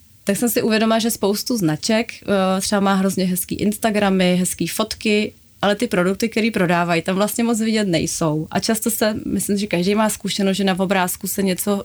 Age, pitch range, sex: 20-39, 180-205 Hz, female